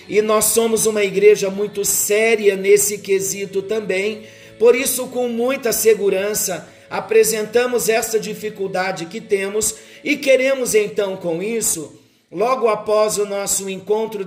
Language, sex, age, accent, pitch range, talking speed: Portuguese, male, 50-69, Brazilian, 200-240 Hz, 125 wpm